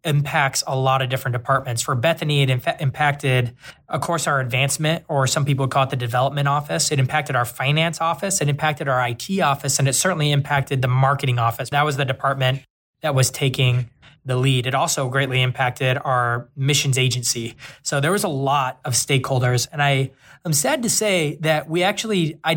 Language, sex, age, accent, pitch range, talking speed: English, male, 20-39, American, 130-145 Hz, 190 wpm